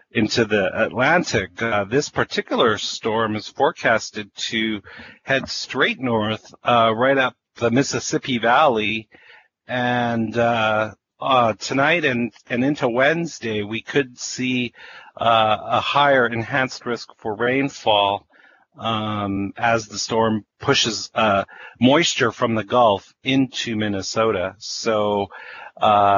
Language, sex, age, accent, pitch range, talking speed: English, male, 40-59, American, 110-130 Hz, 115 wpm